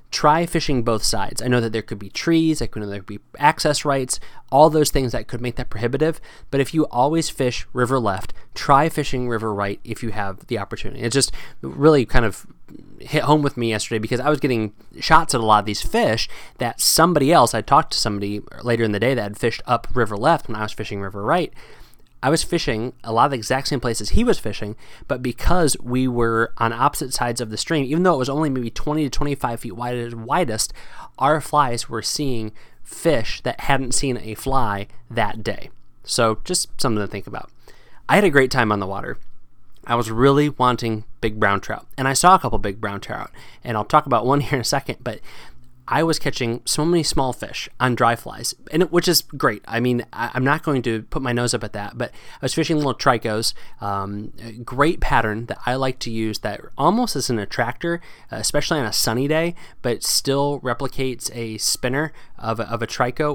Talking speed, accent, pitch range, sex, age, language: 220 wpm, American, 110-145 Hz, male, 20-39, English